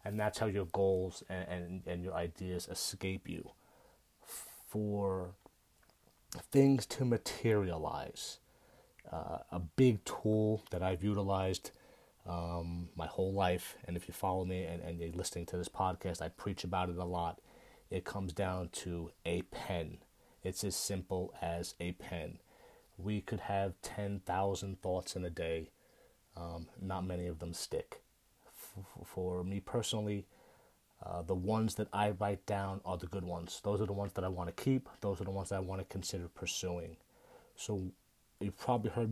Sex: male